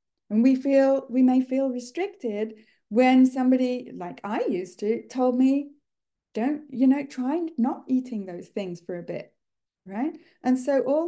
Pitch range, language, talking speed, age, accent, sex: 215-280 Hz, English, 160 wpm, 30-49, British, female